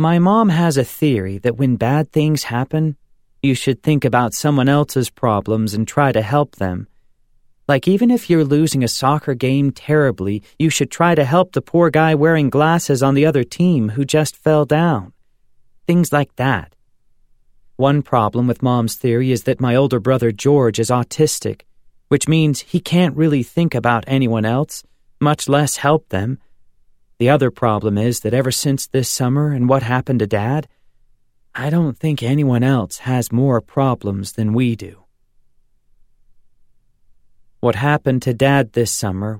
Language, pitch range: English, 115-145 Hz